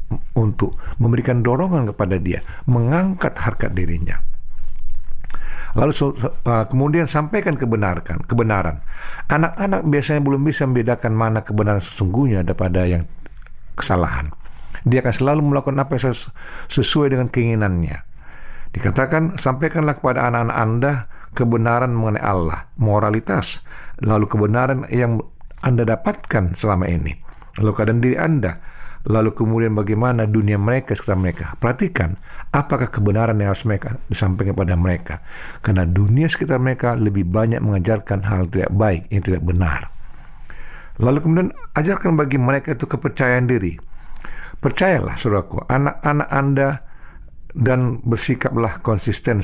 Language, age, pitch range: Indonesian, 50-69, 95-130 Hz